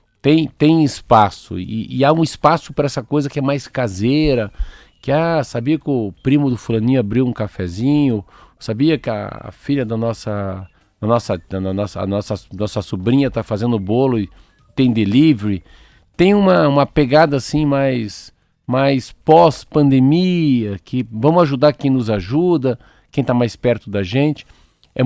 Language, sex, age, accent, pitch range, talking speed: Portuguese, male, 50-69, Brazilian, 105-145 Hz, 165 wpm